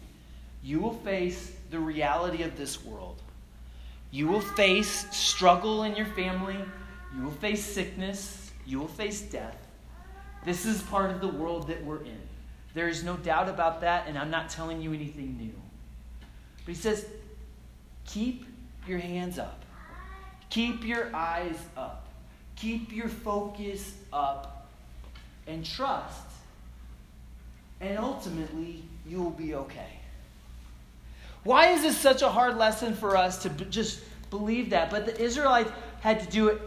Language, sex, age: English, male, 30-49